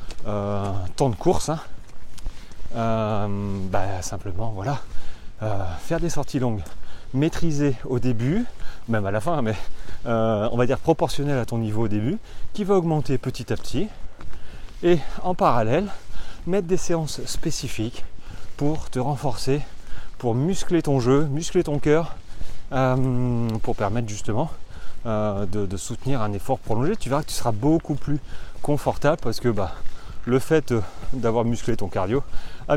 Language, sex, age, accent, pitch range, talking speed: French, male, 30-49, French, 105-145 Hz, 155 wpm